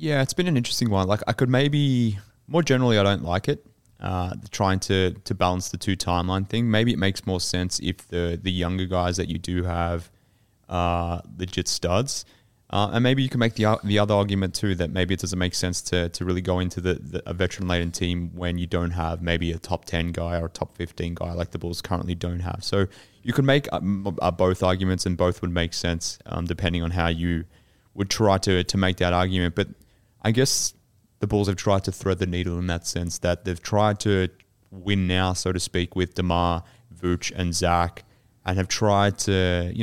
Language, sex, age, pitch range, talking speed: English, male, 20-39, 90-105 Hz, 225 wpm